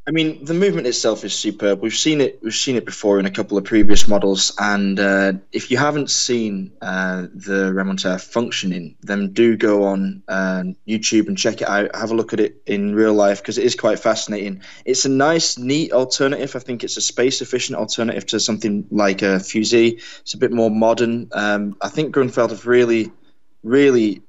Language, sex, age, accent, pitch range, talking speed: English, male, 20-39, British, 100-120 Hz, 195 wpm